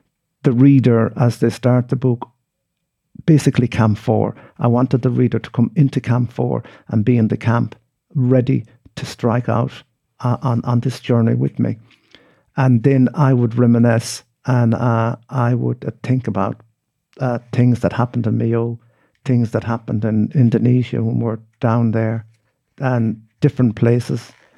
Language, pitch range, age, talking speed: English, 115-130 Hz, 60-79, 160 wpm